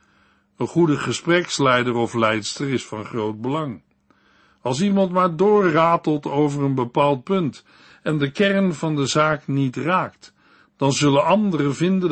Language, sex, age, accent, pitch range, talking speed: Dutch, male, 60-79, Dutch, 120-165 Hz, 145 wpm